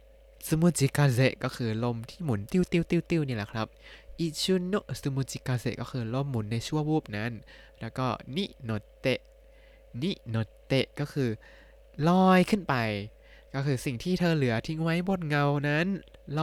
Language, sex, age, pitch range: Thai, male, 20-39, 120-160 Hz